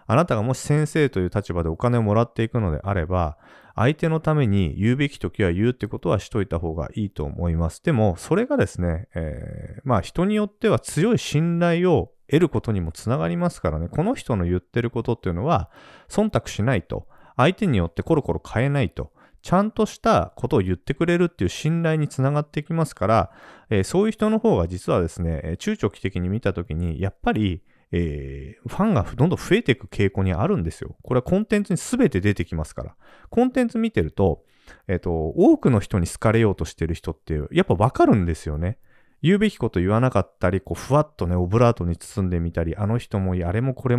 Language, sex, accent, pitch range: Japanese, male, native, 85-135 Hz